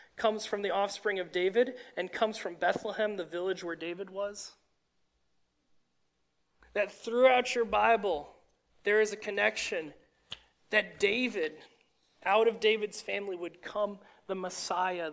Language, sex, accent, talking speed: English, male, American, 130 wpm